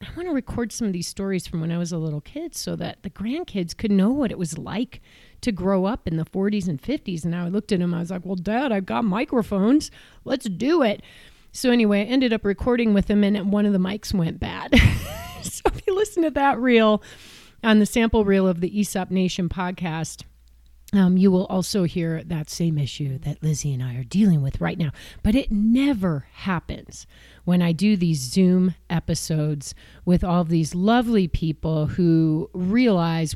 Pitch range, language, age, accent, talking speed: 165-215 Hz, English, 30-49, American, 205 wpm